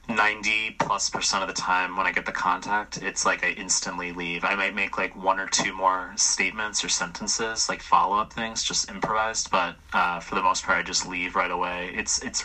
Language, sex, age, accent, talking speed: English, male, 20-39, American, 215 wpm